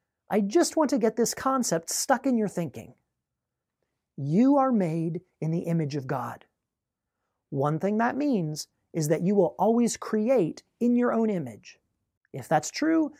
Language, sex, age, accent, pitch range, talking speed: English, male, 30-49, American, 160-215 Hz, 165 wpm